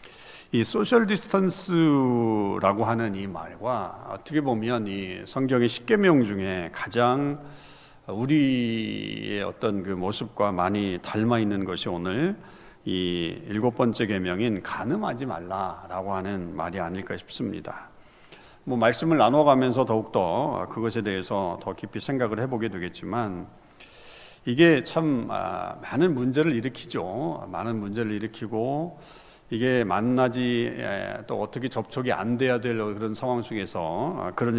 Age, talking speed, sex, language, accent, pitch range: 50-69, 110 wpm, male, English, Korean, 100-135 Hz